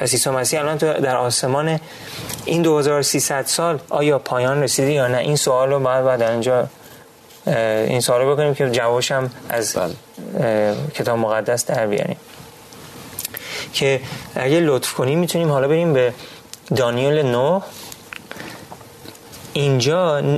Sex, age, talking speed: male, 30-49, 125 wpm